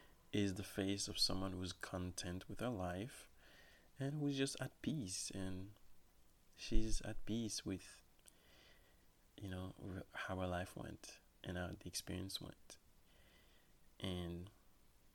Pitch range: 90-105 Hz